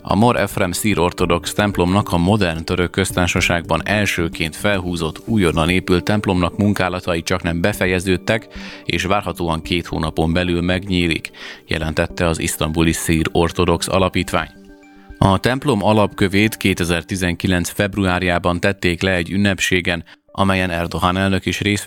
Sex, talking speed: male, 125 wpm